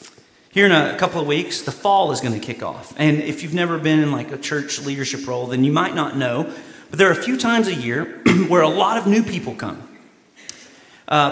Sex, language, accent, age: male, English, American, 40-59